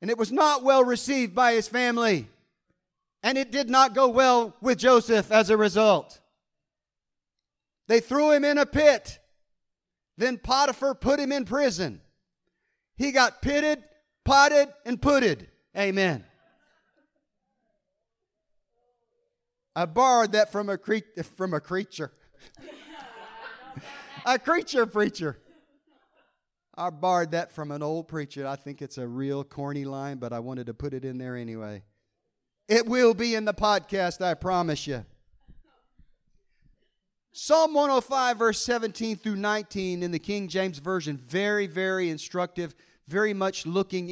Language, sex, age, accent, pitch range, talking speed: English, male, 40-59, American, 165-245 Hz, 135 wpm